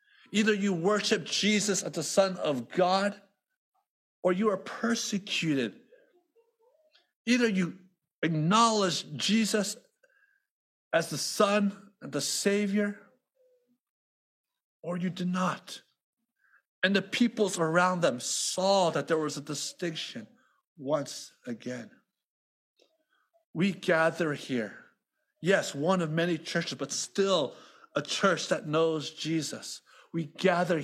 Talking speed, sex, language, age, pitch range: 110 wpm, male, English, 50-69, 140-220 Hz